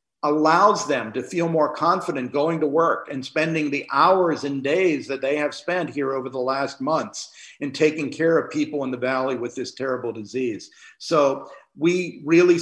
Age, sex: 50-69, male